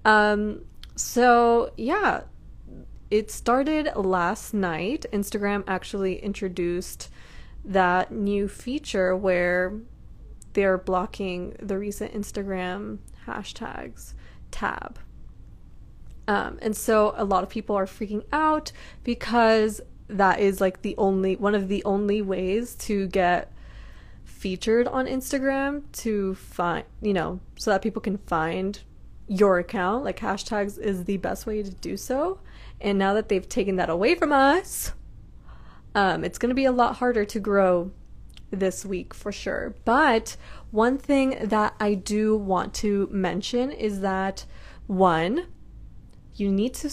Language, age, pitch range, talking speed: English, 20-39, 190-230 Hz, 135 wpm